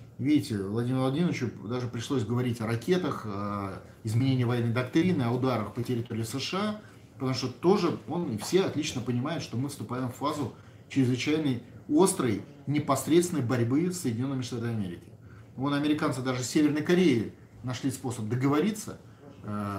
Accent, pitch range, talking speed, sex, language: native, 110-145 Hz, 135 wpm, male, Russian